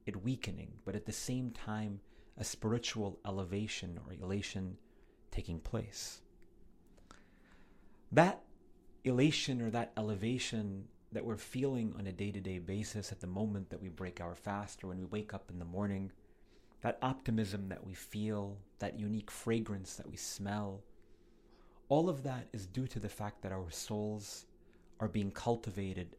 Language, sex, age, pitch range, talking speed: English, male, 30-49, 95-115 Hz, 155 wpm